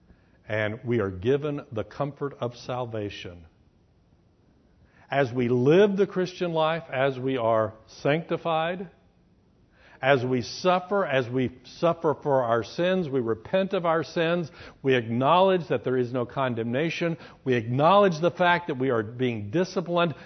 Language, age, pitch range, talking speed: English, 60-79, 105-160 Hz, 140 wpm